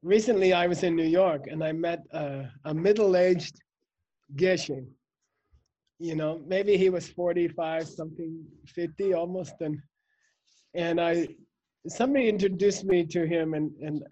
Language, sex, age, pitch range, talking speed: English, male, 30-49, 165-215 Hz, 135 wpm